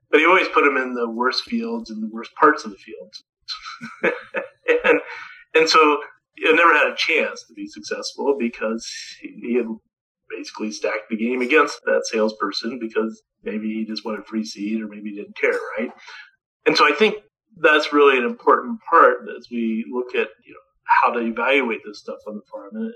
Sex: male